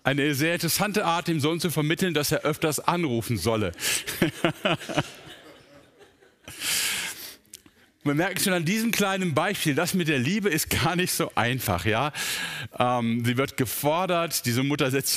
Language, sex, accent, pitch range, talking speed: German, male, German, 120-170 Hz, 145 wpm